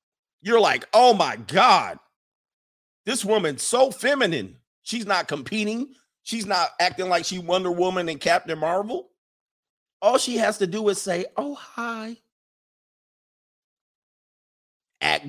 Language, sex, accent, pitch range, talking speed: English, male, American, 130-185 Hz, 125 wpm